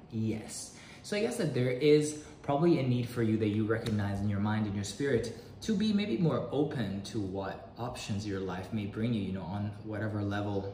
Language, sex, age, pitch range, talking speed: English, male, 20-39, 105-130 Hz, 220 wpm